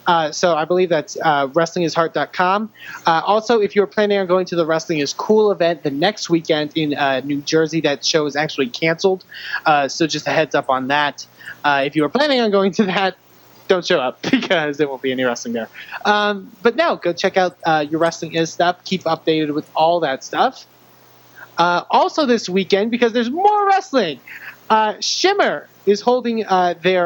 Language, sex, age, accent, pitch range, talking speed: English, male, 20-39, American, 150-190 Hz, 195 wpm